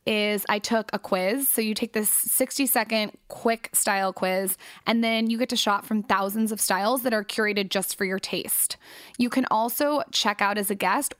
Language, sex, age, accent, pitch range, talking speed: English, female, 20-39, American, 190-225 Hz, 210 wpm